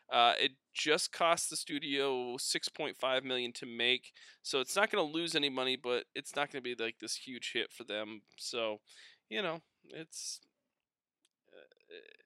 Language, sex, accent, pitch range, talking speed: English, male, American, 115-160 Hz, 170 wpm